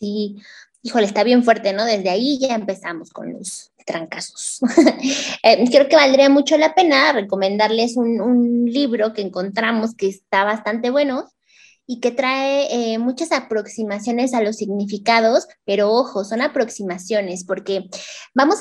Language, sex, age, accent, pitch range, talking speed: Spanish, female, 20-39, Mexican, 210-270 Hz, 145 wpm